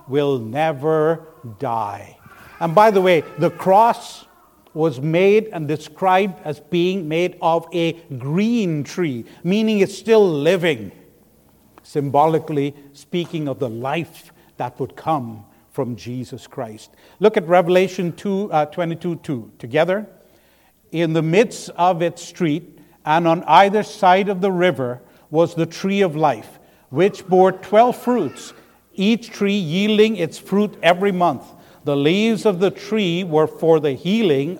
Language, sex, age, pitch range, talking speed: English, male, 70-89, 145-195 Hz, 140 wpm